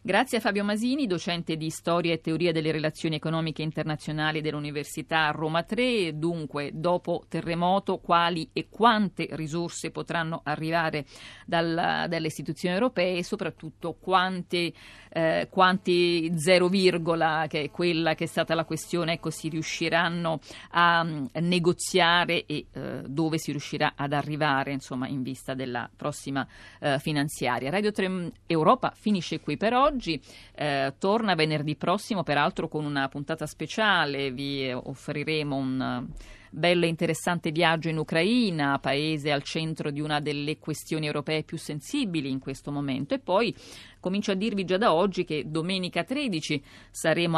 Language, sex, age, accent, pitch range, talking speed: Italian, female, 40-59, native, 145-175 Hz, 140 wpm